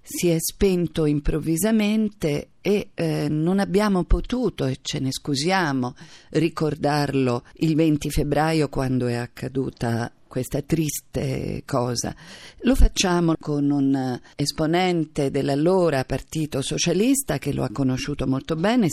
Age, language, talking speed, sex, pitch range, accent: 40-59, Italian, 115 wpm, female, 135-175 Hz, native